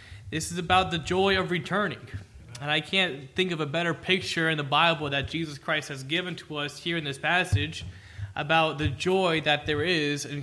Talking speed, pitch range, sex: 205 wpm, 140-180 Hz, male